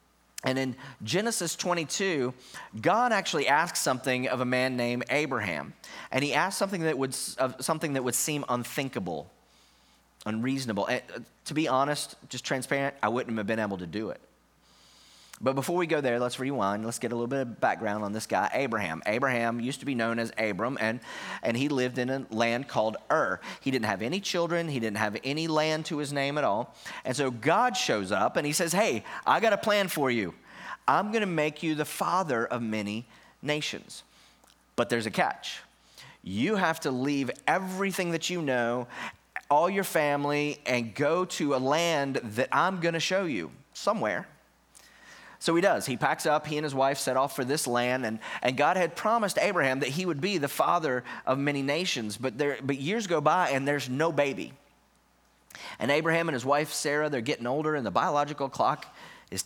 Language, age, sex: English, 30-49, male